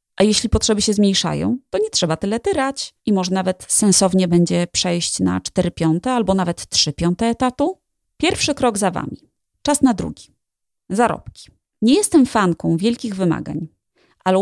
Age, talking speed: 30-49, 160 wpm